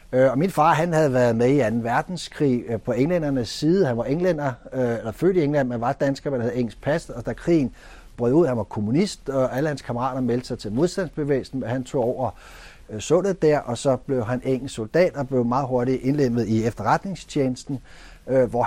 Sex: male